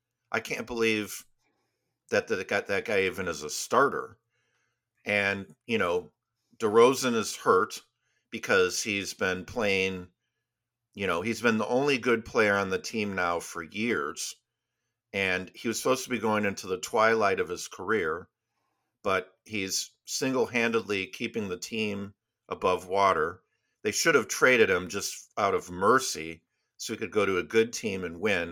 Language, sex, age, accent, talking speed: English, male, 50-69, American, 160 wpm